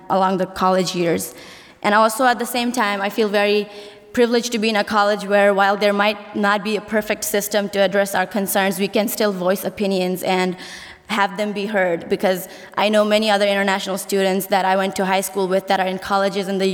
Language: English